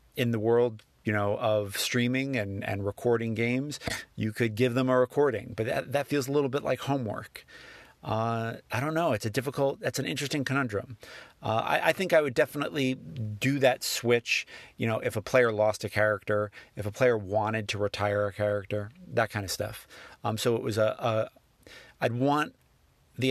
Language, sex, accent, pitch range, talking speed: English, male, American, 105-125 Hz, 190 wpm